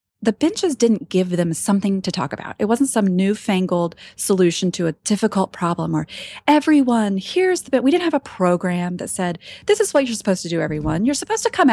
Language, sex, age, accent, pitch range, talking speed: English, female, 30-49, American, 180-250 Hz, 215 wpm